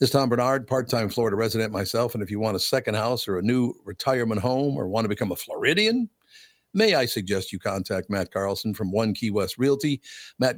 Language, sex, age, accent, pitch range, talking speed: English, male, 50-69, American, 100-135 Hz, 220 wpm